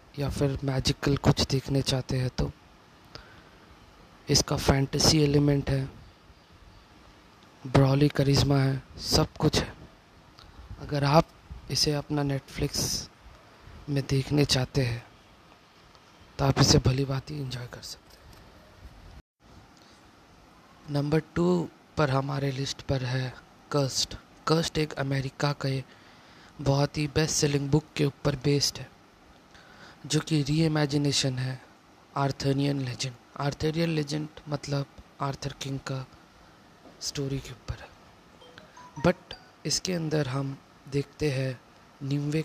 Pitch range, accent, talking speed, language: 130-145 Hz, native, 110 wpm, Hindi